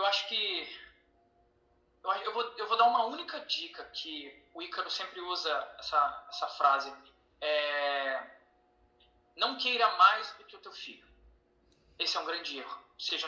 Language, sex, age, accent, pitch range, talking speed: Portuguese, male, 20-39, Brazilian, 155-260 Hz, 155 wpm